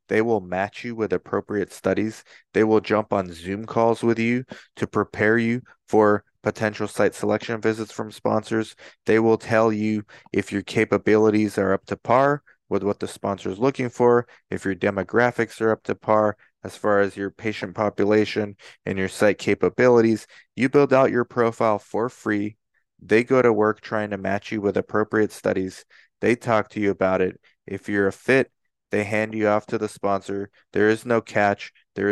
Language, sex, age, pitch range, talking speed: English, male, 20-39, 100-115 Hz, 185 wpm